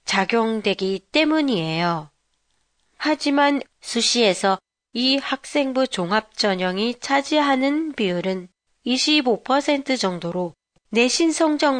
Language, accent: Japanese, Korean